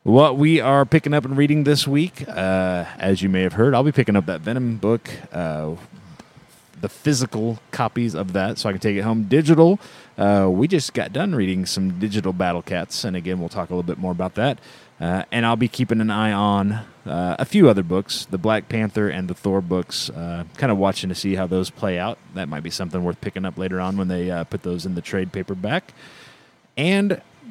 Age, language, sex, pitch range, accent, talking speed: 30-49, English, male, 95-120 Hz, American, 225 wpm